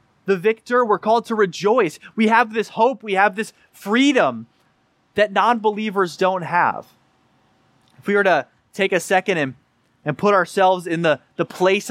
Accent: American